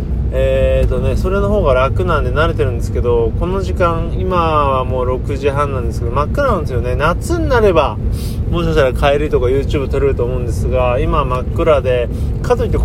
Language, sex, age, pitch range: Japanese, male, 20-39, 100-125 Hz